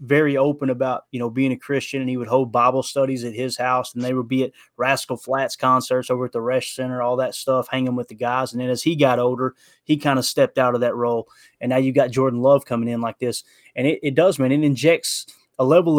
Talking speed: 265 wpm